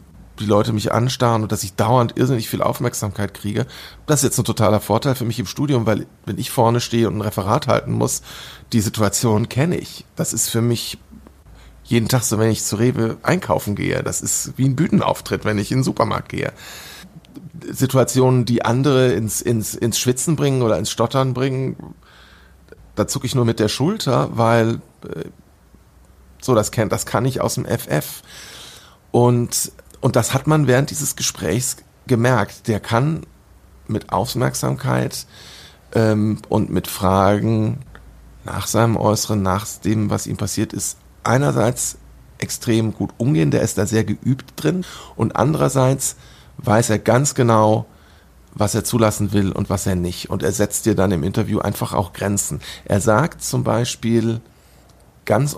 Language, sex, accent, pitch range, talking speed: German, male, German, 105-125 Hz, 165 wpm